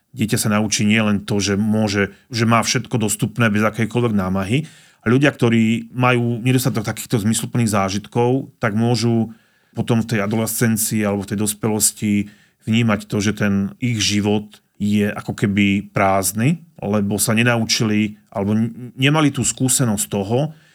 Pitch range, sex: 105-120 Hz, male